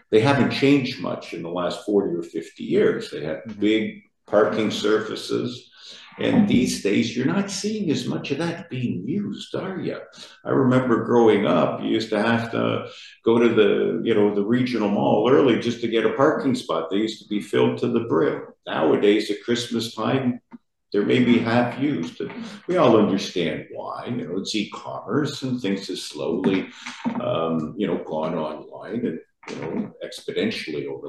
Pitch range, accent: 100-130 Hz, American